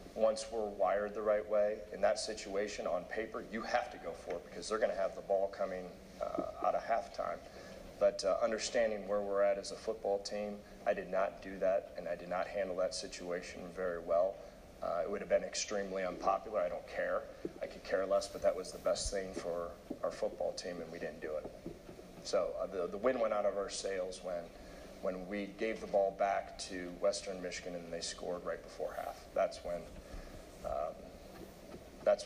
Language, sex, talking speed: English, male, 205 wpm